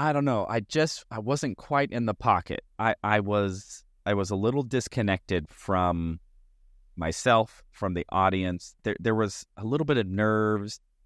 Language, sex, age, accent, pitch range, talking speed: English, male, 30-49, American, 85-115 Hz, 175 wpm